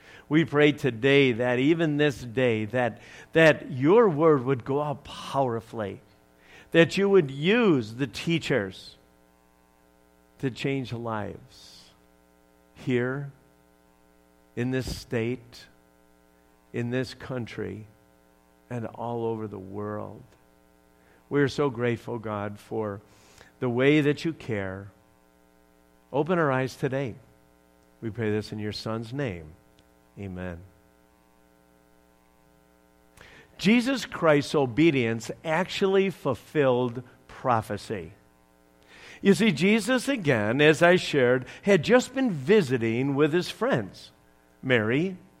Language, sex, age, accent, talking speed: English, male, 50-69, American, 105 wpm